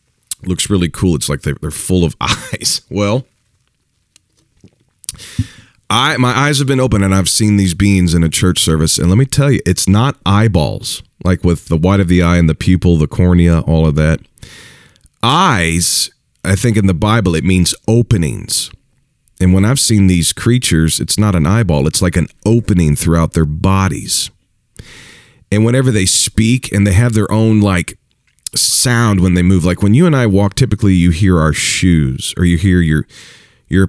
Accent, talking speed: American, 185 wpm